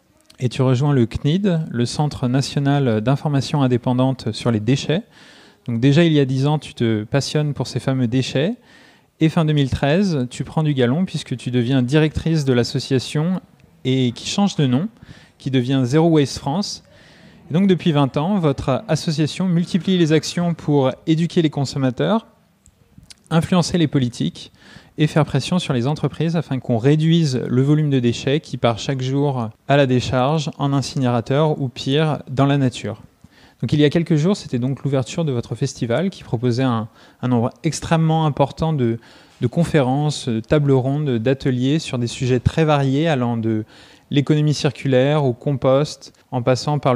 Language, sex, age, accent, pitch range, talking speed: French, male, 20-39, French, 125-155 Hz, 170 wpm